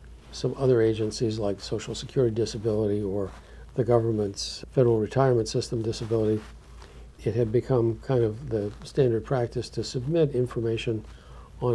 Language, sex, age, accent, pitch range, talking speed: English, male, 60-79, American, 115-135 Hz, 135 wpm